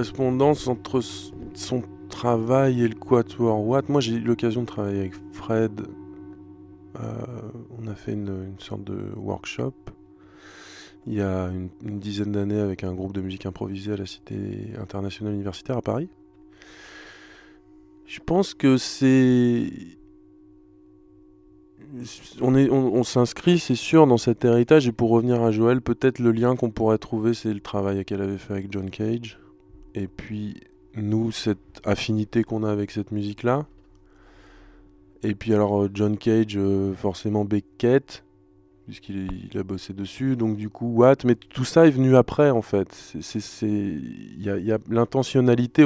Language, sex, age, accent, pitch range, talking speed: French, male, 20-39, French, 100-120 Hz, 155 wpm